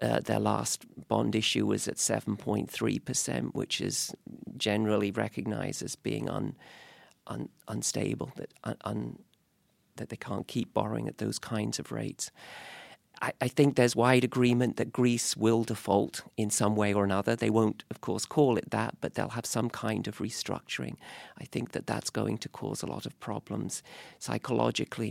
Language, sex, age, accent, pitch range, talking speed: English, male, 40-59, British, 115-145 Hz, 160 wpm